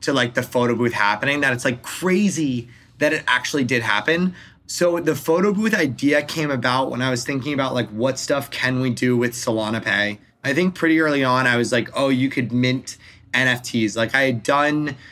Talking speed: 210 wpm